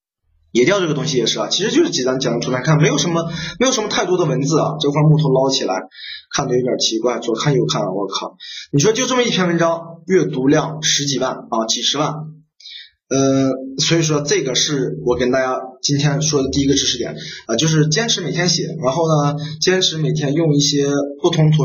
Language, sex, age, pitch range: Chinese, male, 20-39, 130-165 Hz